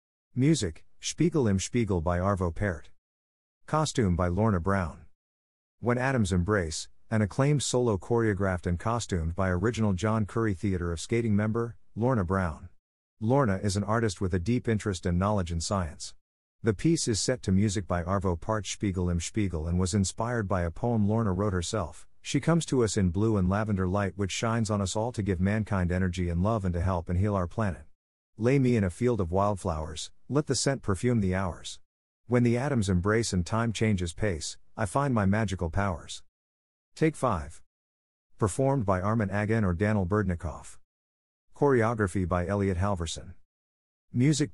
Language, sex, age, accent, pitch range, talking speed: English, male, 50-69, American, 85-110 Hz, 175 wpm